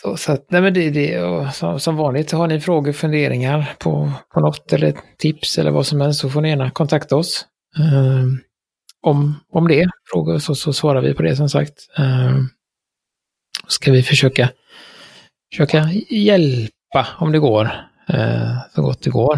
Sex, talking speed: male, 175 wpm